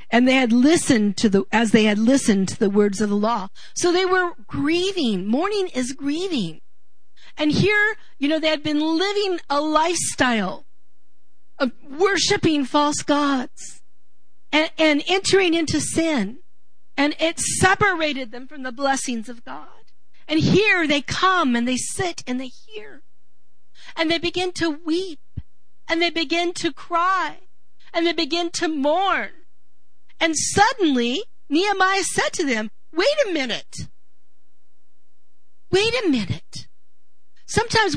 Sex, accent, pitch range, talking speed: female, American, 210-335 Hz, 140 wpm